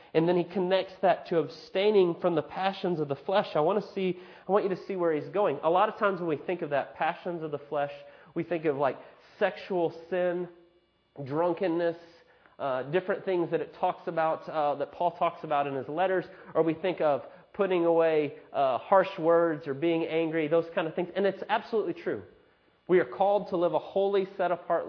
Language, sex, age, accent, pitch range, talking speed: English, male, 30-49, American, 160-190 Hz, 215 wpm